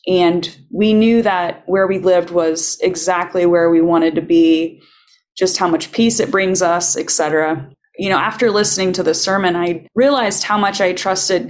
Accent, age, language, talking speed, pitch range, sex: American, 20-39, English, 190 wpm, 170-215 Hz, female